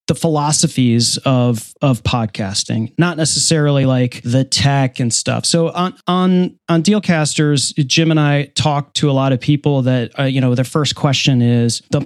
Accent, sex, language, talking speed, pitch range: American, male, English, 175 wpm, 130-170 Hz